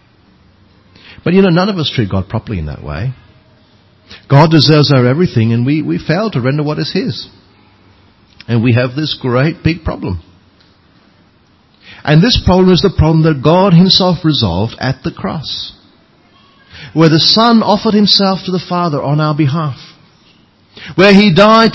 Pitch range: 100-160 Hz